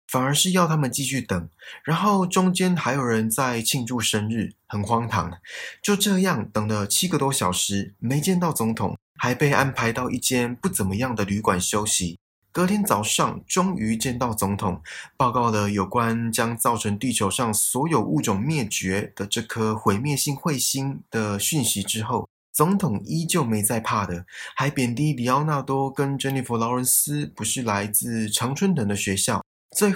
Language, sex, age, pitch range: Chinese, male, 20-39, 105-145 Hz